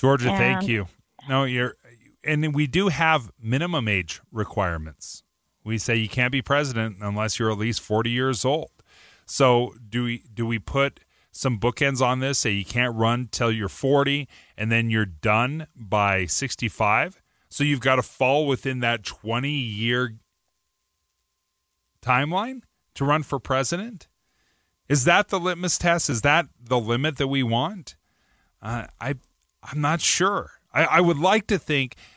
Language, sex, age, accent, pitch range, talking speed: English, male, 30-49, American, 110-145 Hz, 155 wpm